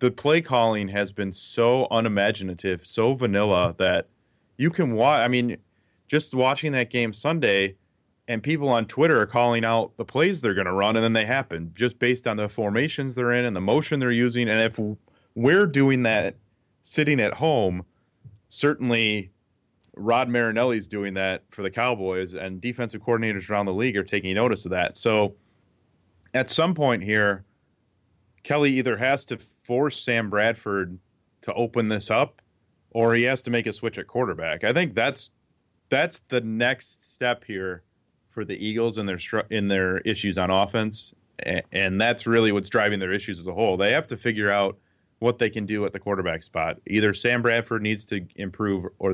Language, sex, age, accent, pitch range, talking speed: English, male, 30-49, American, 95-120 Hz, 185 wpm